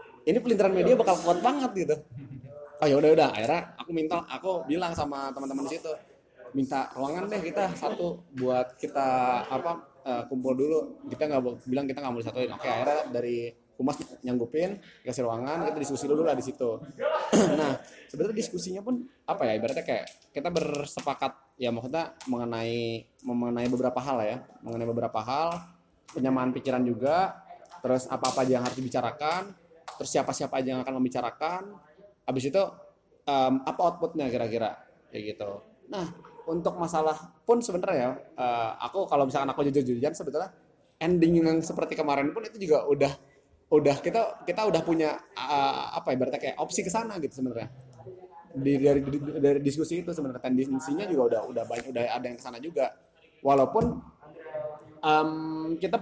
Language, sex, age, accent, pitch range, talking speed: Indonesian, male, 20-39, native, 125-165 Hz, 155 wpm